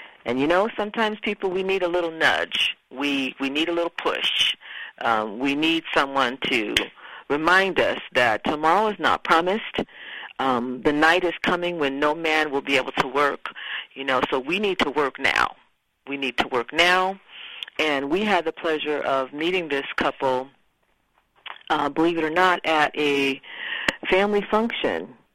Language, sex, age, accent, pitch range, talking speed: English, female, 50-69, American, 145-190 Hz, 170 wpm